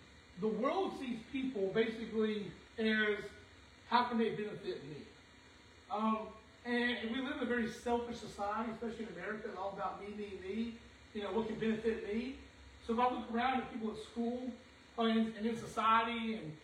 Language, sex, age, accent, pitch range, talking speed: English, male, 40-59, American, 215-255 Hz, 180 wpm